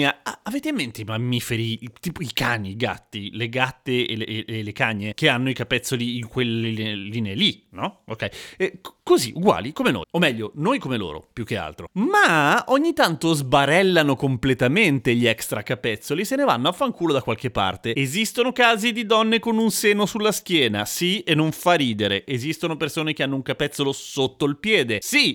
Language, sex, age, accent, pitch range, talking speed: Italian, male, 30-49, native, 120-175 Hz, 195 wpm